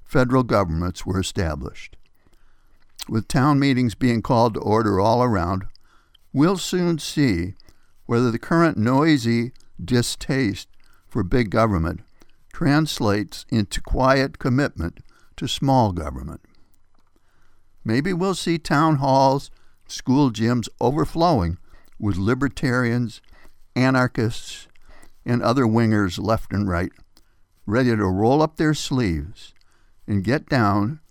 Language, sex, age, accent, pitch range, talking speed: English, male, 60-79, American, 95-130 Hz, 110 wpm